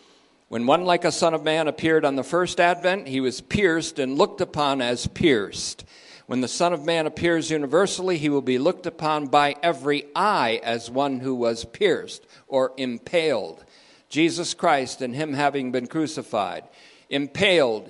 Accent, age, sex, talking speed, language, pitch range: American, 50-69, male, 170 wpm, English, 145-180 Hz